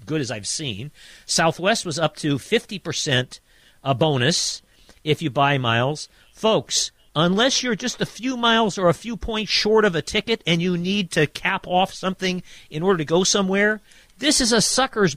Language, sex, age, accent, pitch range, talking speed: English, male, 50-69, American, 145-195 Hz, 180 wpm